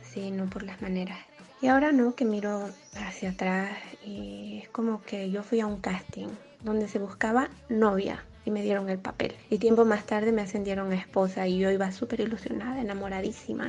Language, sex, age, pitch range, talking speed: Spanish, female, 20-39, 190-225 Hz, 195 wpm